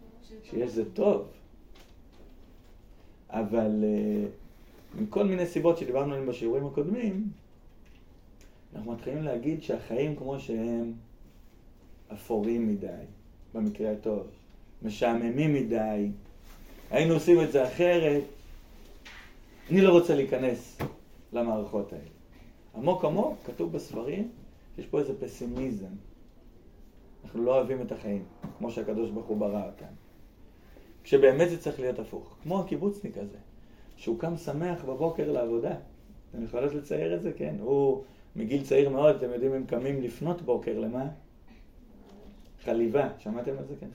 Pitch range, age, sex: 105-155 Hz, 30-49, male